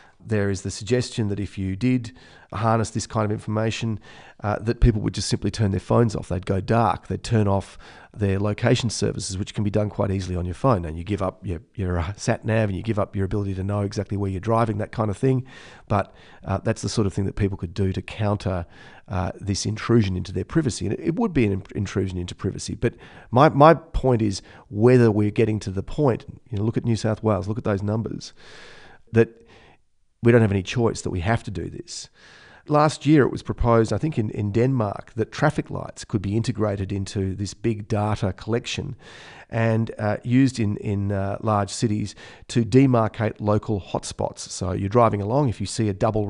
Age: 40-59